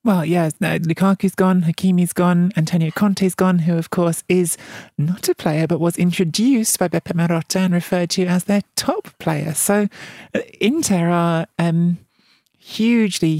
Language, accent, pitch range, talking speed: English, British, 165-190 Hz, 155 wpm